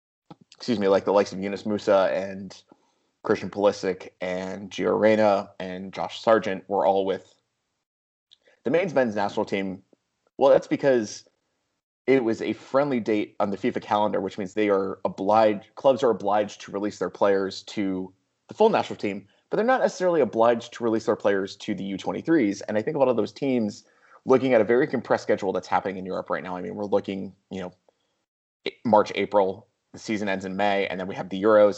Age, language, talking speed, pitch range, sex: 20-39, English, 200 wpm, 95-115 Hz, male